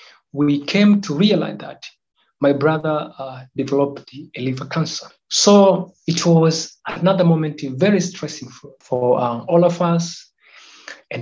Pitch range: 140-180 Hz